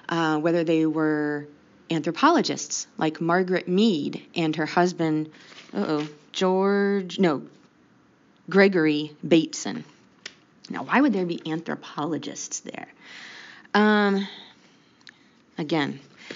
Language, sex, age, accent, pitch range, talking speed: English, female, 20-39, American, 160-205 Hz, 90 wpm